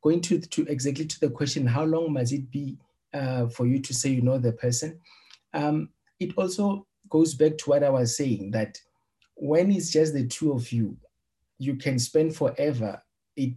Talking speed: 195 wpm